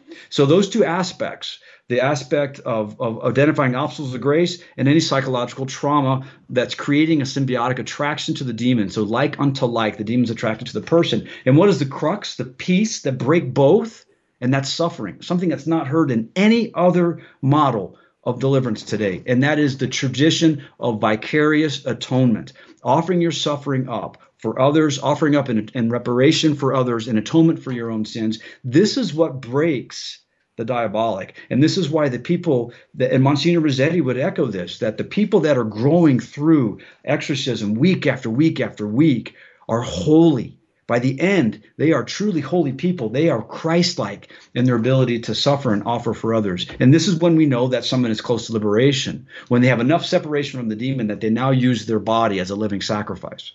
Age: 40-59